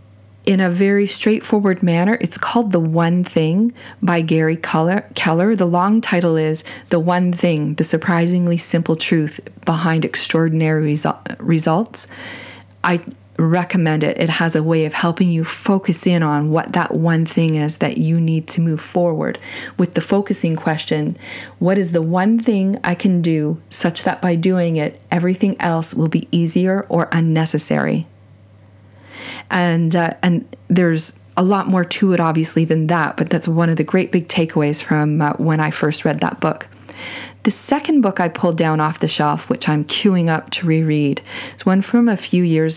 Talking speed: 175 wpm